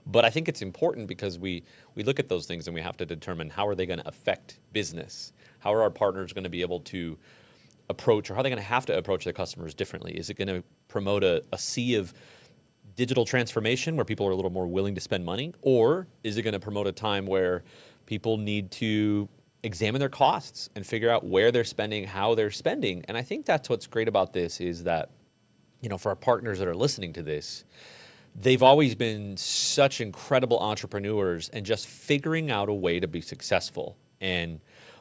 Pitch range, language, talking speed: 95-125 Hz, English, 220 wpm